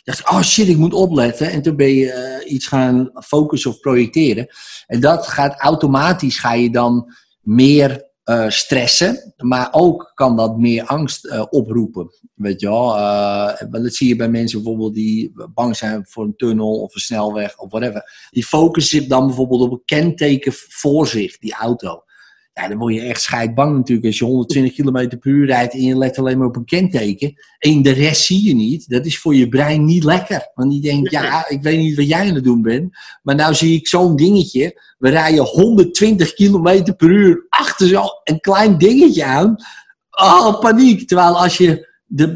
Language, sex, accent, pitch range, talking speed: Dutch, male, Dutch, 120-170 Hz, 195 wpm